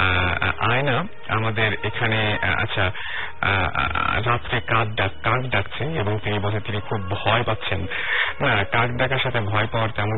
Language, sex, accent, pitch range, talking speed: Bengali, male, native, 100-120 Hz, 105 wpm